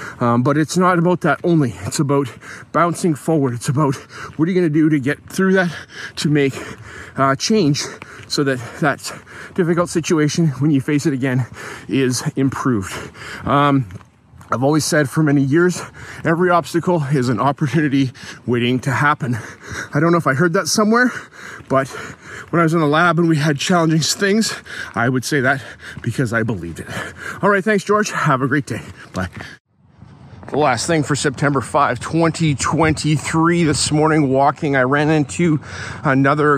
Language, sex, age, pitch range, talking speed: English, male, 30-49, 125-160 Hz, 170 wpm